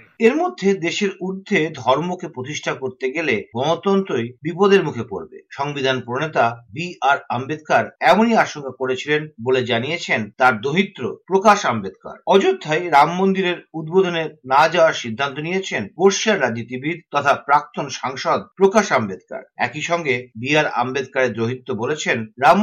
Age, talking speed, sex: 50-69, 125 wpm, male